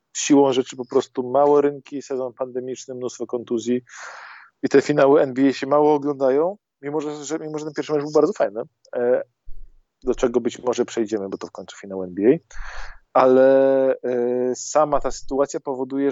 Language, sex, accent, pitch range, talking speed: Polish, male, native, 115-135 Hz, 155 wpm